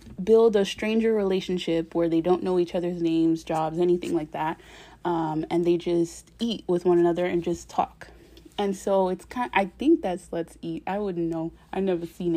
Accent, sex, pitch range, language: American, female, 175-210 Hz, English